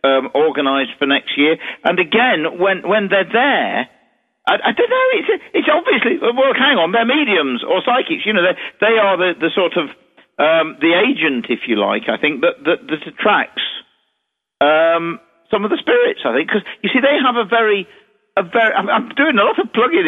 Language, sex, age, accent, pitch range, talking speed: English, male, 50-69, British, 145-220 Hz, 205 wpm